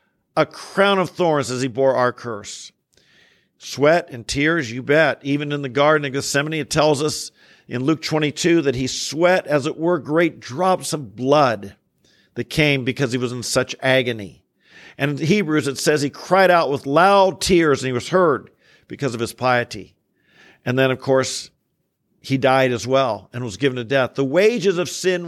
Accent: American